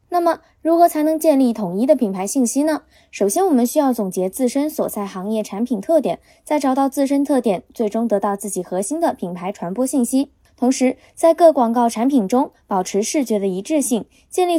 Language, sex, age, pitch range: Chinese, female, 20-39, 215-300 Hz